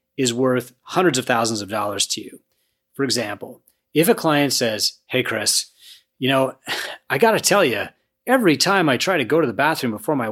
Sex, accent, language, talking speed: male, American, English, 200 wpm